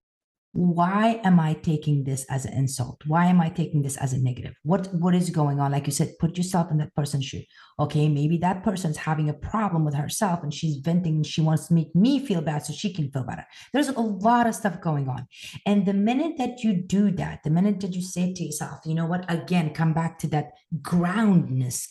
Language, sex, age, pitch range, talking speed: English, female, 30-49, 150-205 Hz, 235 wpm